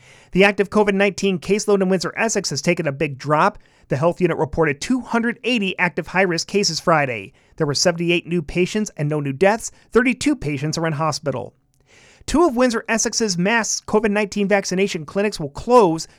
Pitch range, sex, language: 165-215 Hz, male, English